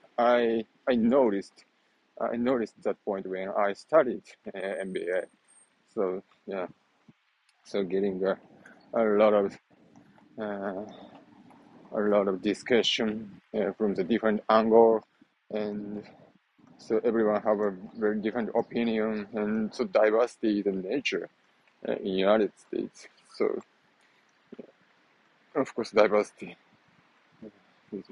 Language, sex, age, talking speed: English, male, 20-39, 115 wpm